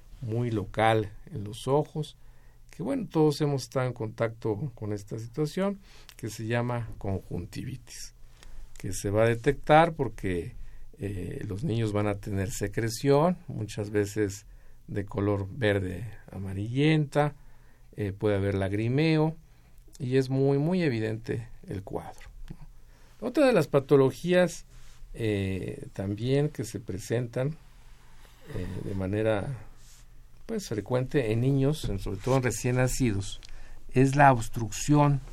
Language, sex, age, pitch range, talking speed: Spanish, male, 50-69, 105-140 Hz, 125 wpm